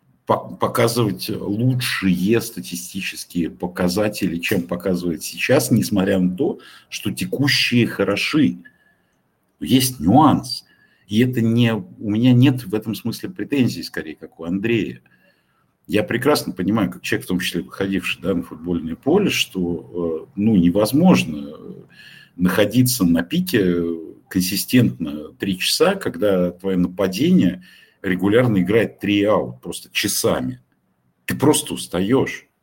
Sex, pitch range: male, 85-110 Hz